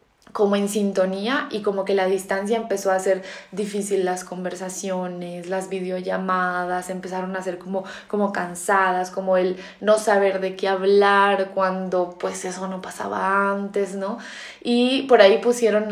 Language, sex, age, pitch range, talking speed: Spanish, female, 20-39, 190-225 Hz, 150 wpm